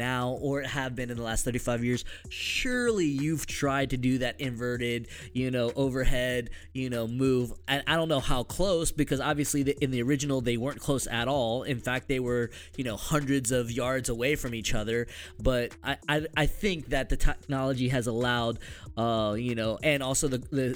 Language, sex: English, male